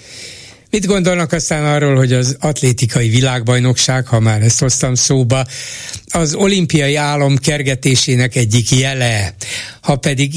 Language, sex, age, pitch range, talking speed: Hungarian, male, 60-79, 115-135 Hz, 120 wpm